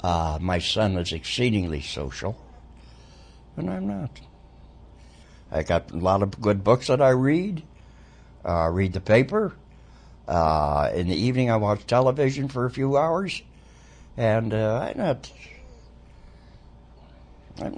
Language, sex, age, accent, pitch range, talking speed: English, male, 60-79, American, 70-110 Hz, 135 wpm